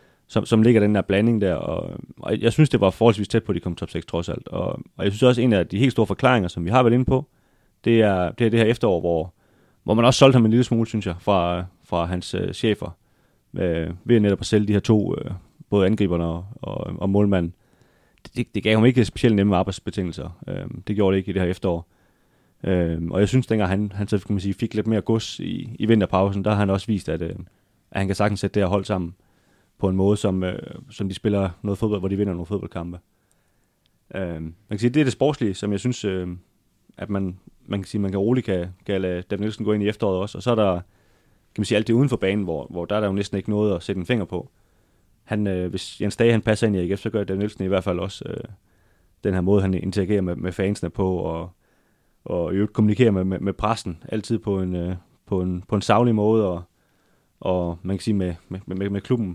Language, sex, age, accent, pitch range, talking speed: Danish, male, 30-49, native, 90-110 Hz, 265 wpm